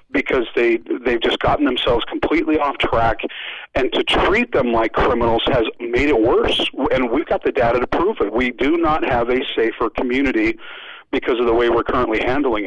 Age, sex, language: 40-59, male, English